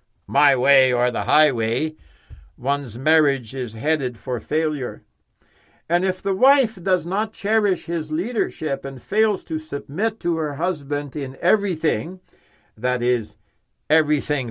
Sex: male